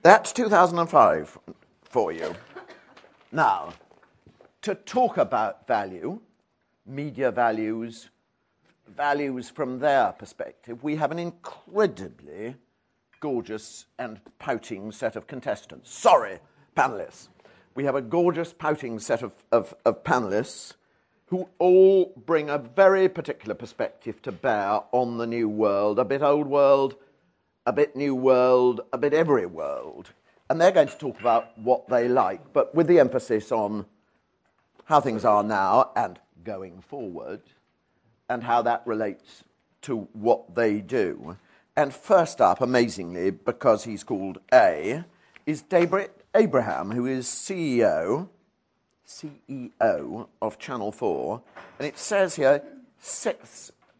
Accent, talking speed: British, 125 wpm